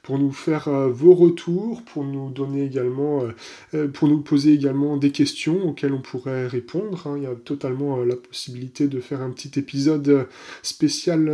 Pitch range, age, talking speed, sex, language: 130-150 Hz, 20-39, 165 wpm, male, French